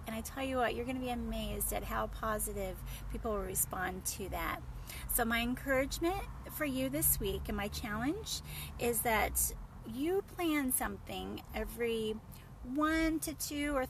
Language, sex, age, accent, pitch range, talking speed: English, female, 30-49, American, 205-270 Hz, 165 wpm